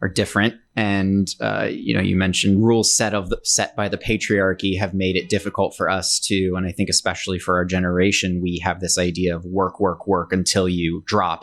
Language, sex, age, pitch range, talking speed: English, male, 30-49, 90-100 Hz, 215 wpm